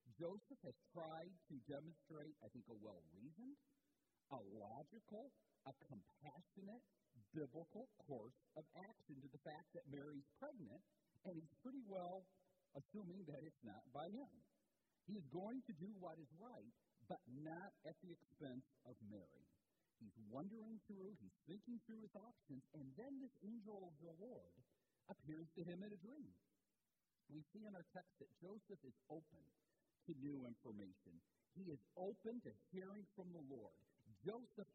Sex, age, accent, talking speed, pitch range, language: male, 50-69, American, 155 wpm, 135-195 Hz, English